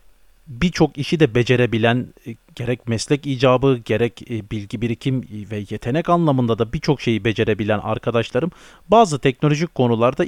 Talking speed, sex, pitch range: 125 wpm, male, 110-140 Hz